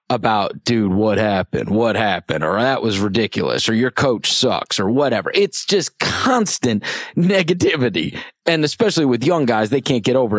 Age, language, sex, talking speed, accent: 30-49, English, male, 170 wpm, American